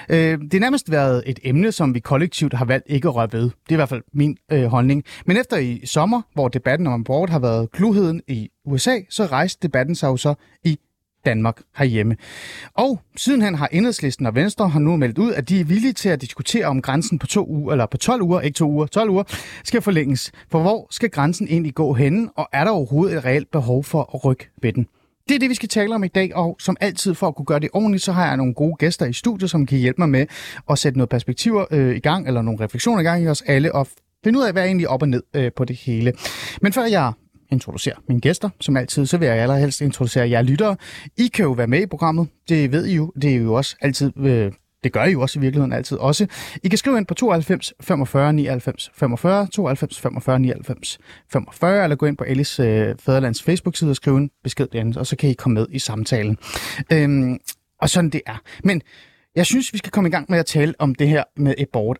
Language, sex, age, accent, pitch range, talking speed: Danish, male, 30-49, native, 130-180 Hz, 245 wpm